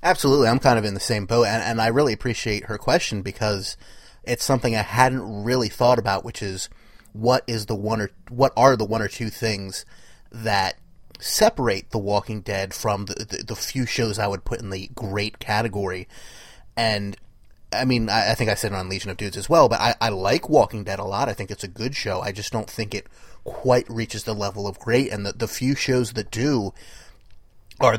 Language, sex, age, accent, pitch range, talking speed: English, male, 30-49, American, 105-125 Hz, 220 wpm